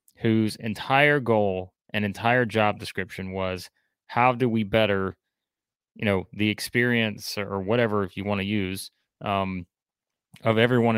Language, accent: English, American